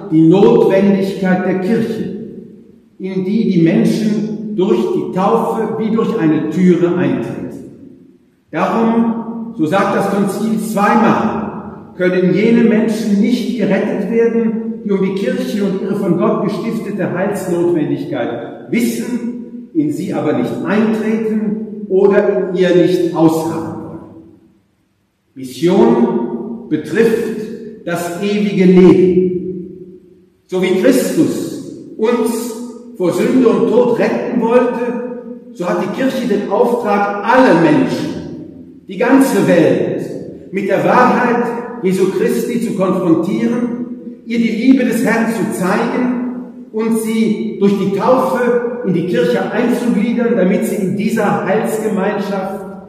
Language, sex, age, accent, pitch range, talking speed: English, male, 50-69, German, 185-230 Hz, 120 wpm